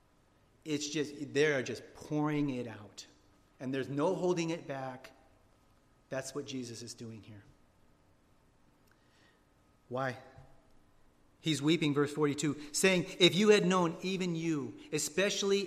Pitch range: 145-220 Hz